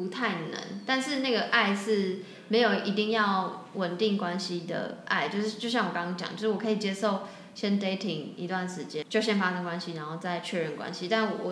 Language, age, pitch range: Chinese, 10-29, 180-230 Hz